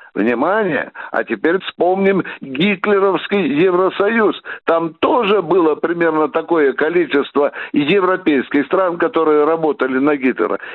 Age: 60-79